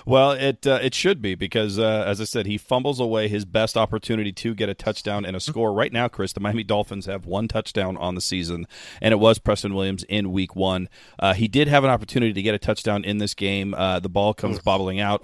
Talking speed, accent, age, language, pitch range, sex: 250 wpm, American, 40-59, English, 95-115 Hz, male